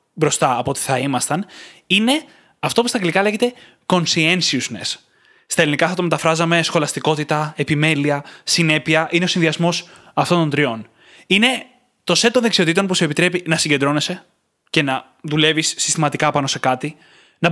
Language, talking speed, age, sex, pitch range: Greek, 150 wpm, 20-39, male, 145-185 Hz